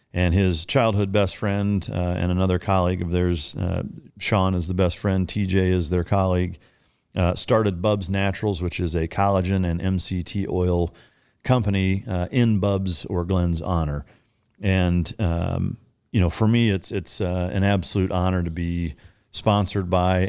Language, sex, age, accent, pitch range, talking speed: English, male, 40-59, American, 85-100 Hz, 165 wpm